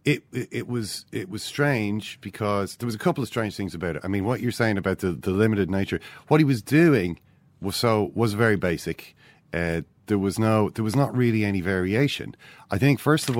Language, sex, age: English, male, 40-59